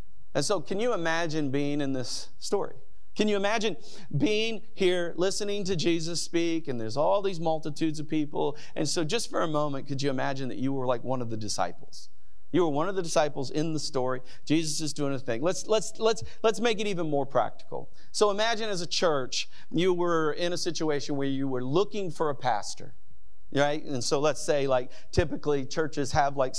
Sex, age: male, 40-59